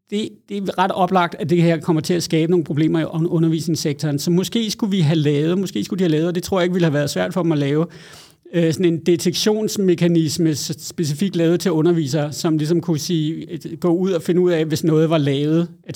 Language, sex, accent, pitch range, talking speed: Danish, male, native, 160-185 Hz, 235 wpm